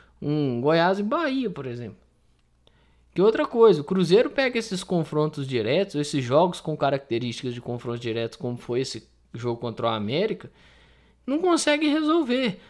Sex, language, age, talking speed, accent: male, Portuguese, 20-39, 150 wpm, Brazilian